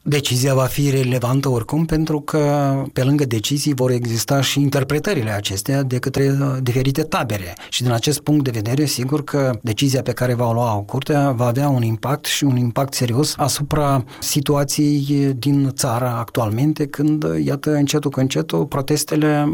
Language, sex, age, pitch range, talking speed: Romanian, male, 30-49, 130-160 Hz, 165 wpm